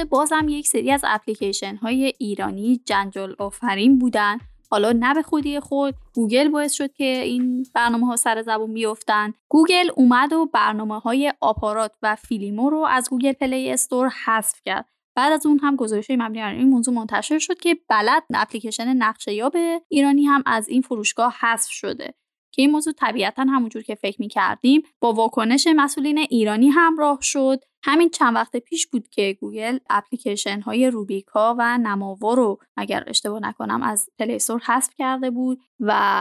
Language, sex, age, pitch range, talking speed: Persian, female, 10-29, 215-270 Hz, 165 wpm